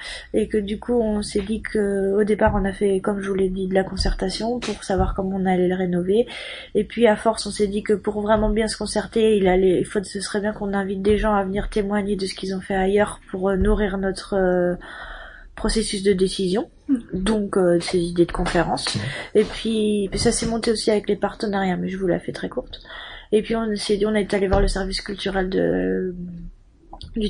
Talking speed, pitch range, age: 230 wpm, 190-215 Hz, 20-39